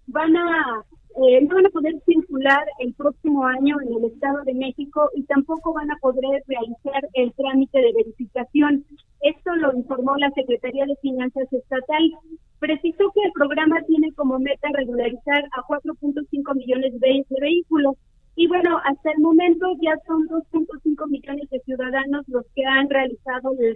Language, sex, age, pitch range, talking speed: Spanish, female, 30-49, 265-310 Hz, 160 wpm